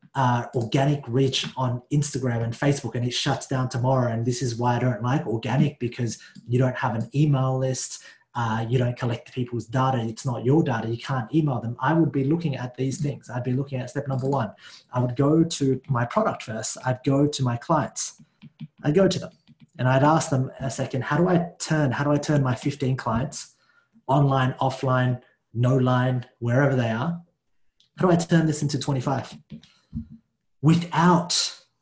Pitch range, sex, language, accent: 125-150 Hz, male, English, Australian